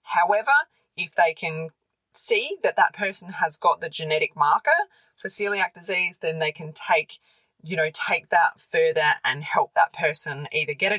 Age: 20-39